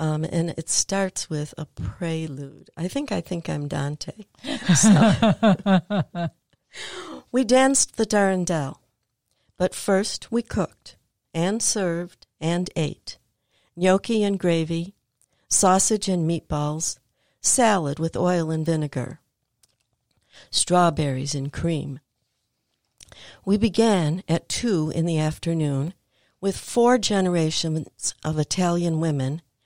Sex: female